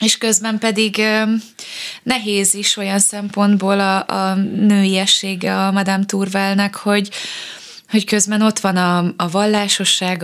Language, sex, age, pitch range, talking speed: Hungarian, female, 20-39, 180-210 Hz, 135 wpm